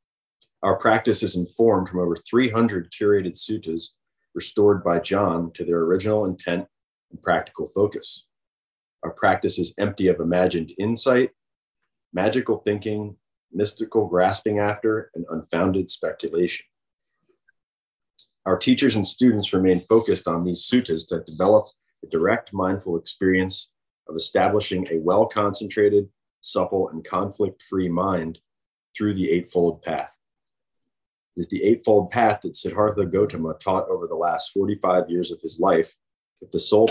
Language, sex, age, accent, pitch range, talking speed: English, male, 30-49, American, 90-110 Hz, 130 wpm